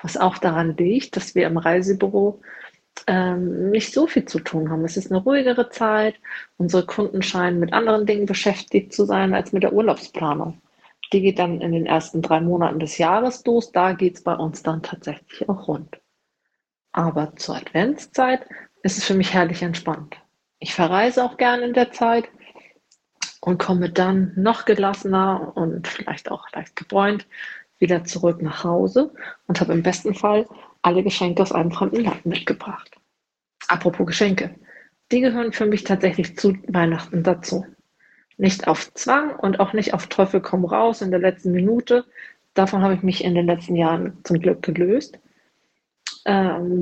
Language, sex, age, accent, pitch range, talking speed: German, female, 40-59, German, 175-210 Hz, 170 wpm